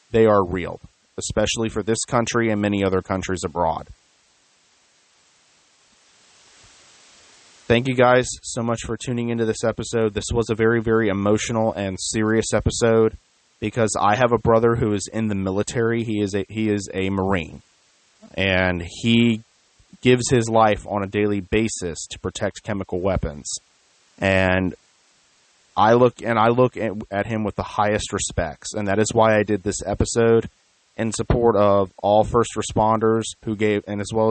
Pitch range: 100-115 Hz